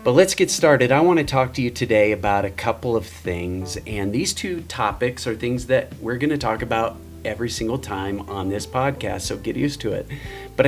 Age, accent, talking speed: 30-49, American, 215 wpm